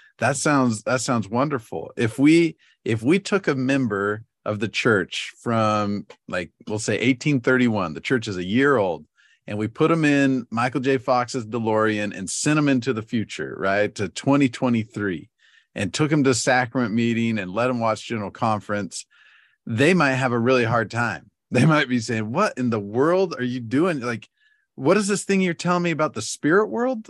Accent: American